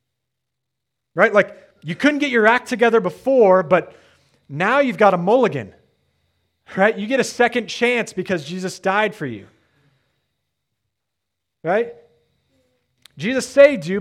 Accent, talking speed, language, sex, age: American, 130 wpm, English, male, 30-49